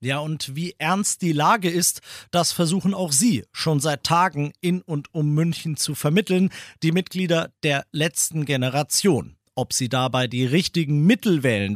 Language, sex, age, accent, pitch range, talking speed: German, male, 40-59, German, 135-175 Hz, 165 wpm